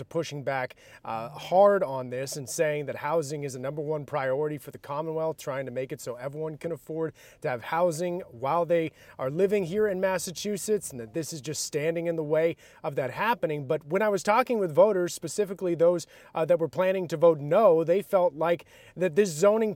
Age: 30-49